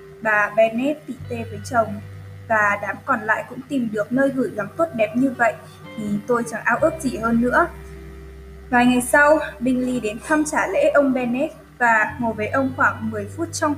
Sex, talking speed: female, 190 wpm